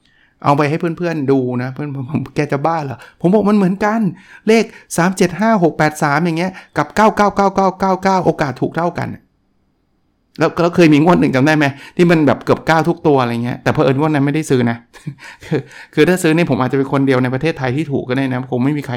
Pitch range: 125-160 Hz